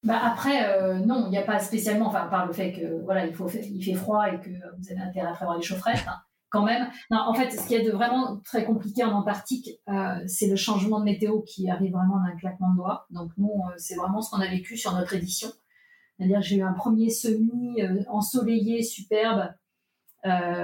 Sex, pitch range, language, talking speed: female, 185-220 Hz, French, 225 wpm